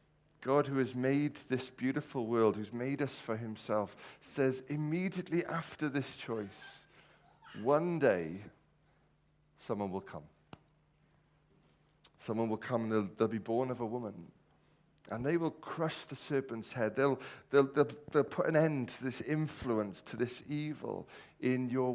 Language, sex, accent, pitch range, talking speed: English, male, British, 115-140 Hz, 150 wpm